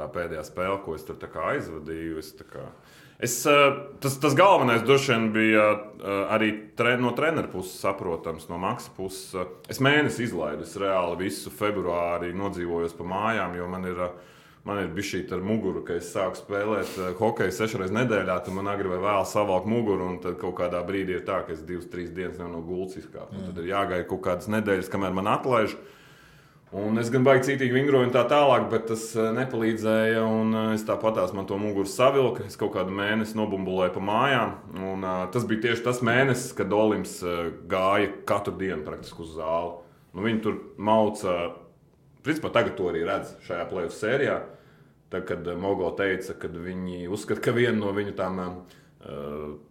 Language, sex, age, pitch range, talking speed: English, male, 30-49, 90-110 Hz, 185 wpm